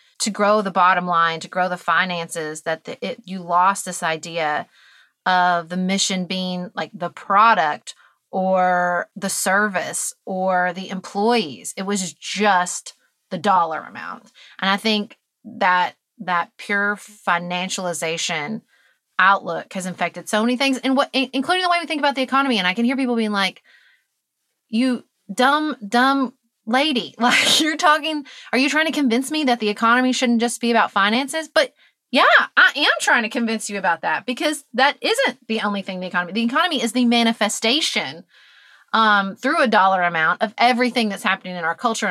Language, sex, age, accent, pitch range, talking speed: English, female, 30-49, American, 180-250 Hz, 170 wpm